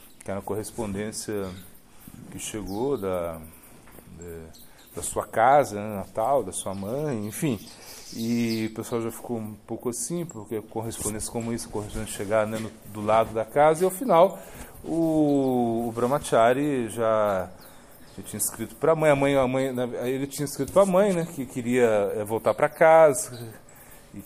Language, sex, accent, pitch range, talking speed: Portuguese, male, Brazilian, 100-150 Hz, 170 wpm